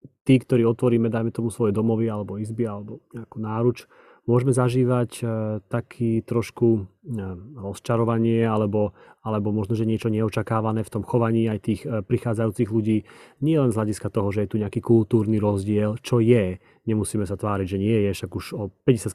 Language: Slovak